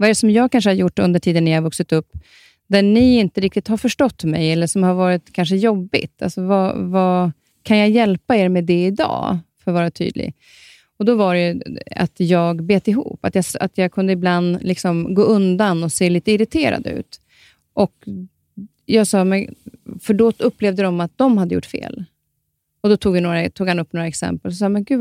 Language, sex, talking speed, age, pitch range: Swedish, female, 220 wpm, 30-49, 170-210 Hz